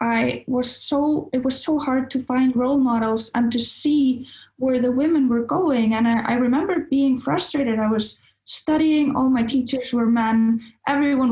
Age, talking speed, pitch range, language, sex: 20-39, 180 wpm, 220-260 Hz, English, female